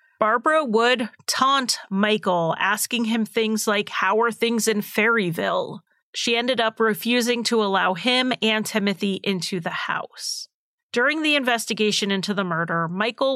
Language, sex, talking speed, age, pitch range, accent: English, female, 145 wpm, 40-59, 200-245 Hz, American